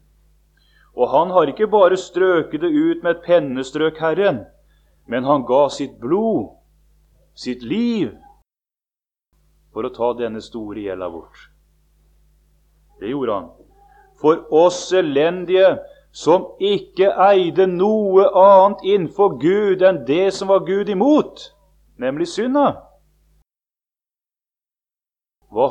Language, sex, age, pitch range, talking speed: English, male, 30-49, 110-185 Hz, 105 wpm